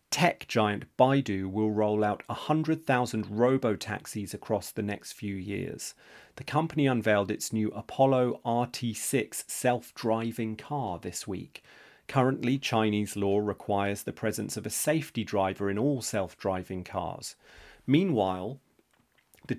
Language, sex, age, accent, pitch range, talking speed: English, male, 40-59, British, 105-125 Hz, 125 wpm